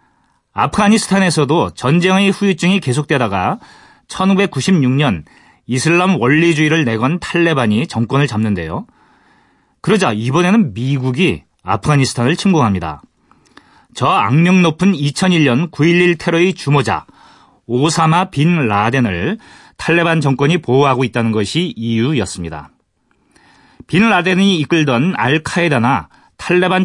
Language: Korean